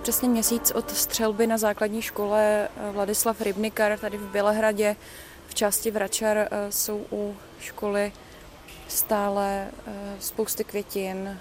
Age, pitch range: 20-39, 205-225 Hz